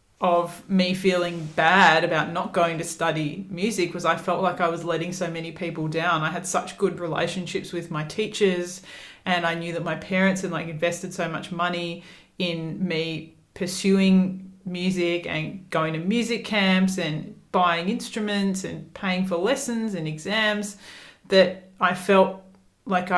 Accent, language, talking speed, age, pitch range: Australian, English, 165 wpm, 30-49, 170-190 Hz